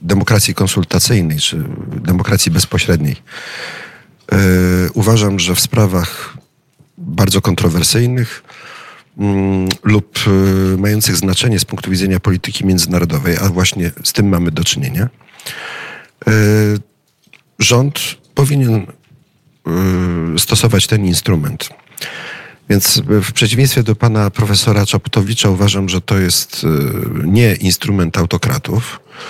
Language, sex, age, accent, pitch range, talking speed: Polish, male, 40-59, native, 95-120 Hz, 90 wpm